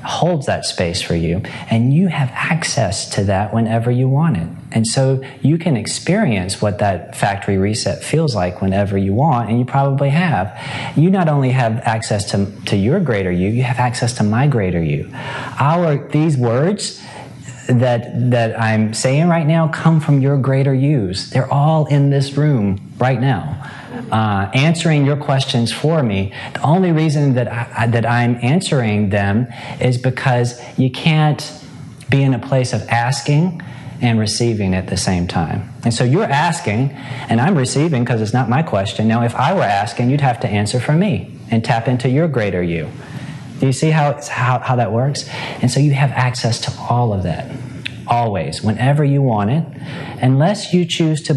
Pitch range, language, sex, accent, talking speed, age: 115-145 Hz, English, male, American, 185 wpm, 30-49